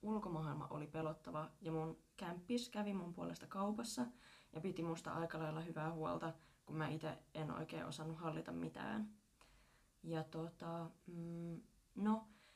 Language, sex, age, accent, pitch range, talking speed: Finnish, female, 20-39, native, 165-210 Hz, 135 wpm